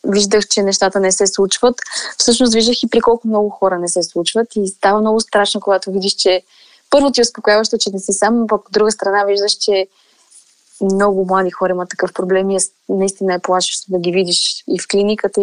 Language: Bulgarian